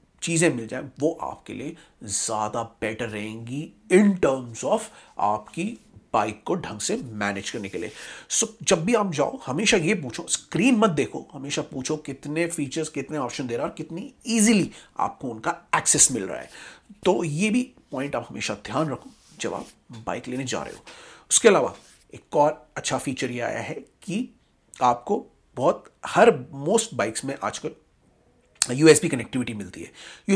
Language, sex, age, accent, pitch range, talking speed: Hindi, male, 40-59, native, 130-170 Hz, 175 wpm